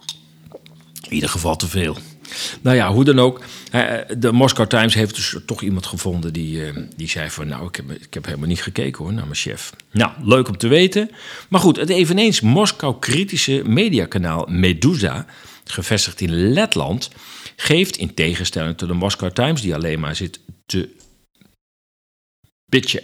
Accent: Dutch